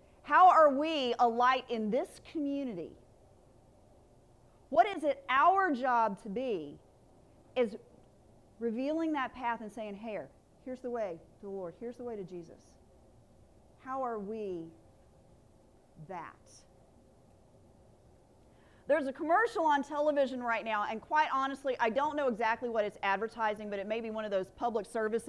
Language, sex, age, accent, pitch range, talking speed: English, female, 40-59, American, 210-285 Hz, 150 wpm